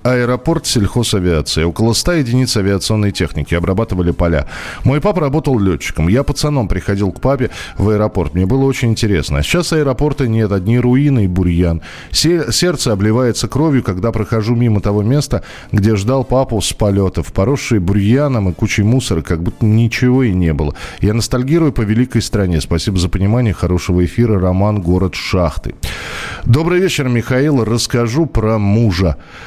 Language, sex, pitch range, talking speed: Russian, male, 90-125 Hz, 155 wpm